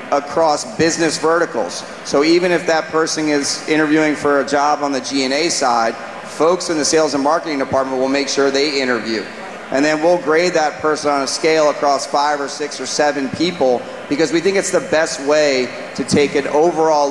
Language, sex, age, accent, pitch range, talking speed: English, male, 30-49, American, 140-165 Hz, 195 wpm